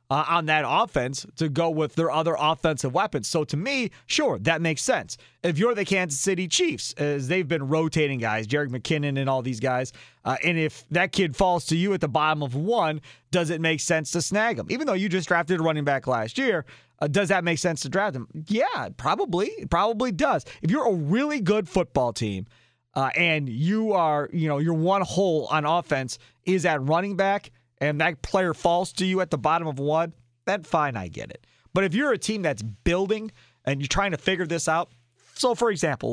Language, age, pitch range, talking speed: English, 30-49, 130-180 Hz, 220 wpm